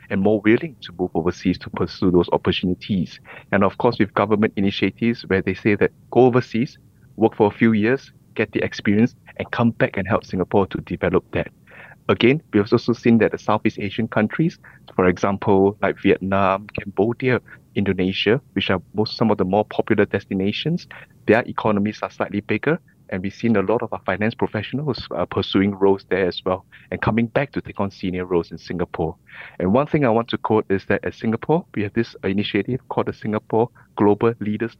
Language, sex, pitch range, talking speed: English, male, 100-115 Hz, 195 wpm